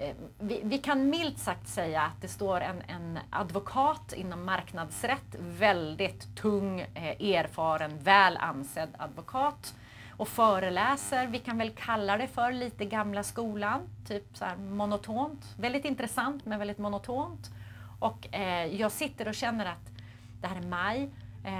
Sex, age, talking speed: female, 30-49, 140 wpm